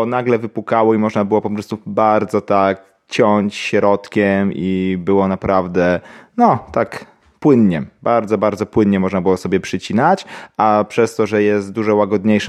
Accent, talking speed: native, 150 wpm